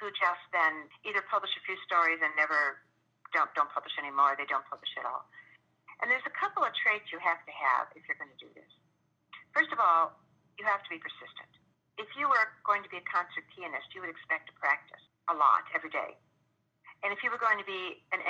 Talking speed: 225 wpm